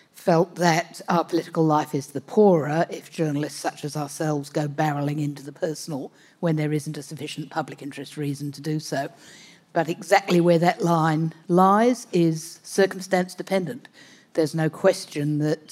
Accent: British